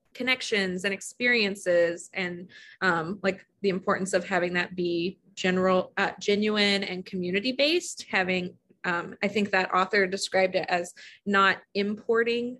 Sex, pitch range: female, 190-225 Hz